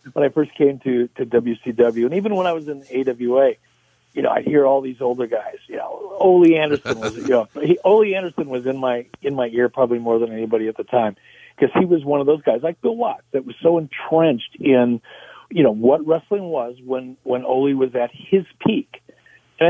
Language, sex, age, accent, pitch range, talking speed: English, male, 50-69, American, 125-170 Hz, 220 wpm